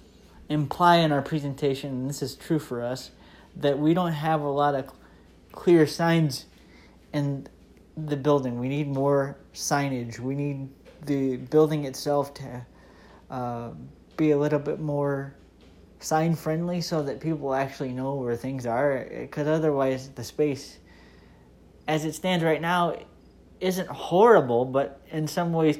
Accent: American